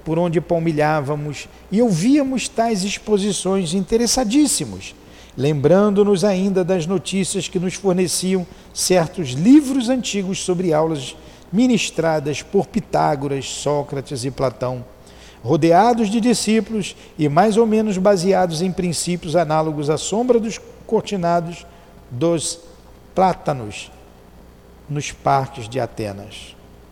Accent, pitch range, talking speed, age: Brazilian, 145-195 Hz, 105 wpm, 50-69